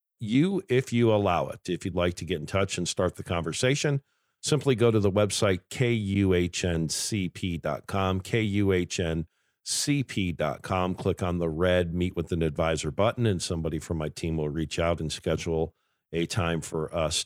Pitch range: 80-95 Hz